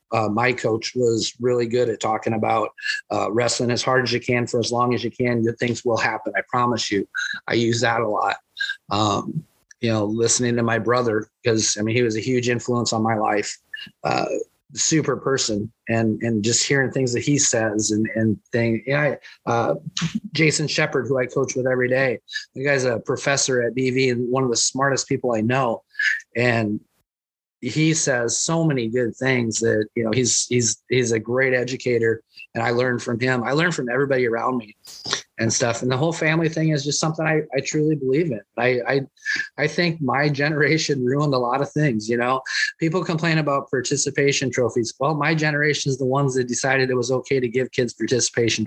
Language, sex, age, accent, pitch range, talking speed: English, male, 30-49, American, 115-140 Hz, 205 wpm